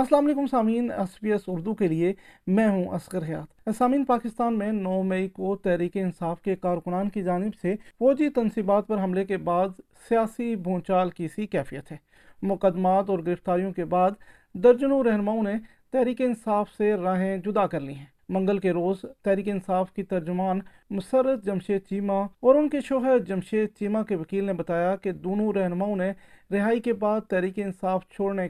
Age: 40-59